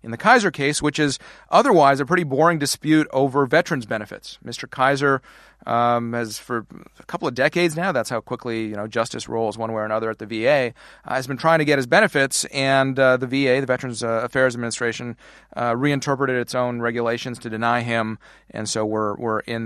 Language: English